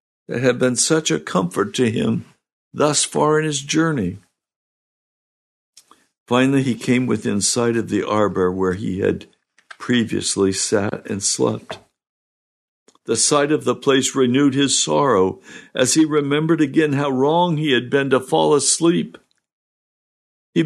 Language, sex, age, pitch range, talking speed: English, male, 60-79, 105-165 Hz, 140 wpm